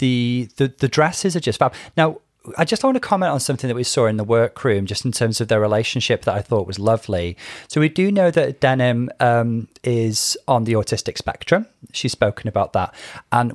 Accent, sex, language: British, male, English